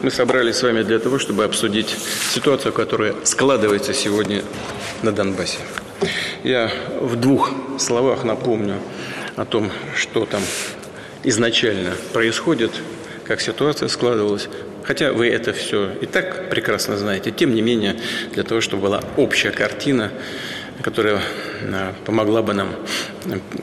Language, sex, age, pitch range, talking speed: Russian, male, 40-59, 105-120 Hz, 125 wpm